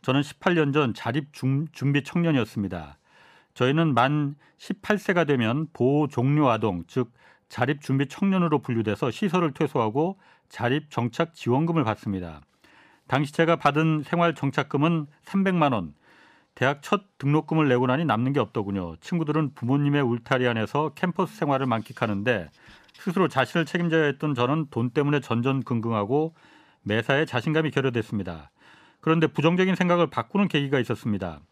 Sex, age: male, 40-59